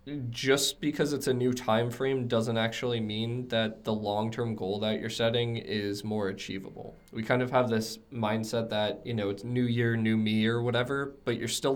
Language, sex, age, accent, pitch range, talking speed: English, male, 20-39, American, 105-120 Hz, 200 wpm